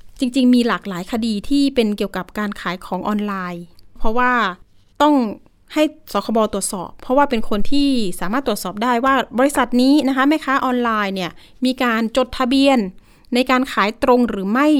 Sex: female